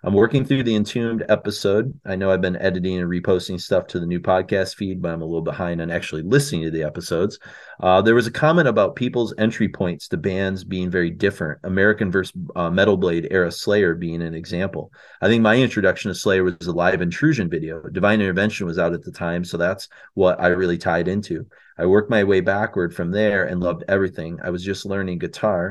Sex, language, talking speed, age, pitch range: male, English, 220 wpm, 30-49, 90-110 Hz